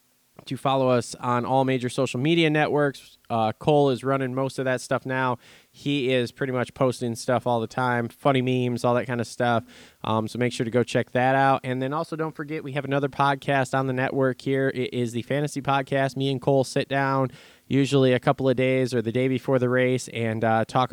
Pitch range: 115-135 Hz